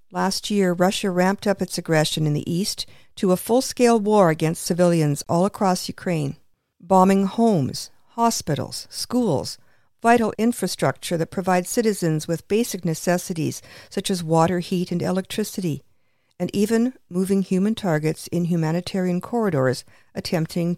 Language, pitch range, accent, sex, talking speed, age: English, 165-210 Hz, American, female, 135 wpm, 50-69